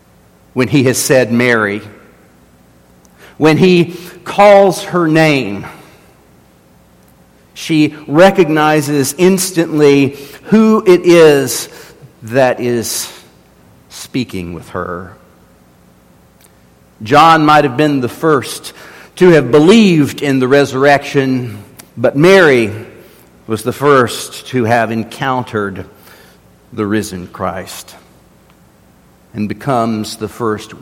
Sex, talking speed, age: male, 95 wpm, 50-69